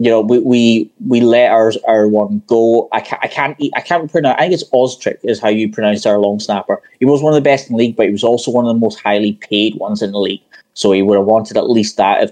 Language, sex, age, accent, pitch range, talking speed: English, male, 20-39, British, 105-135 Hz, 290 wpm